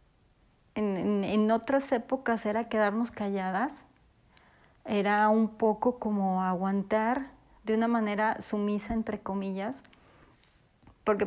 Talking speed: 100 wpm